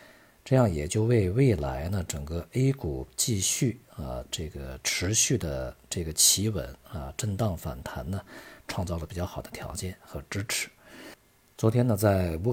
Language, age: Chinese, 50-69